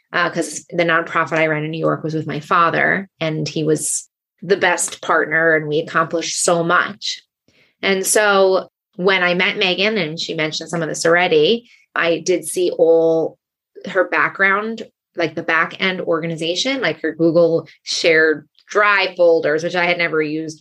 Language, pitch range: English, 165-205 Hz